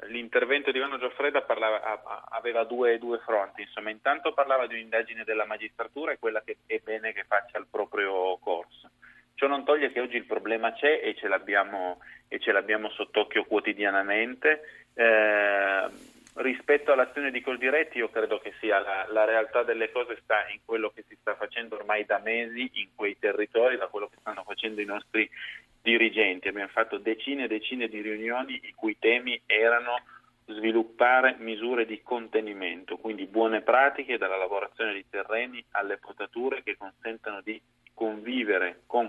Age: 30-49